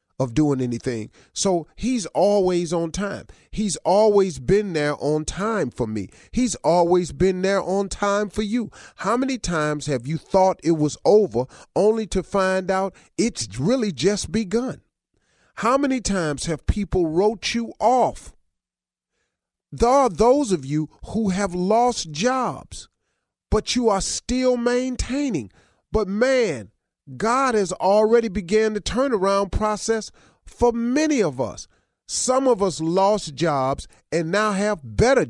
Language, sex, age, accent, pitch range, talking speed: English, male, 40-59, American, 155-220 Hz, 145 wpm